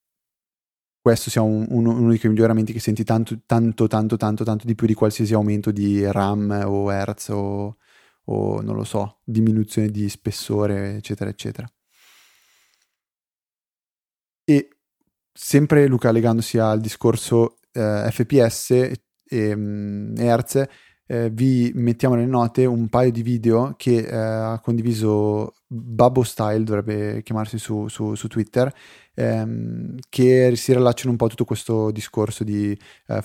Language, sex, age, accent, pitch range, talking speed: Italian, male, 20-39, native, 105-120 Hz, 130 wpm